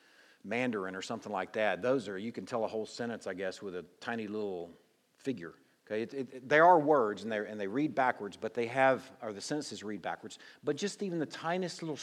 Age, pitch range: 50-69, 105-145 Hz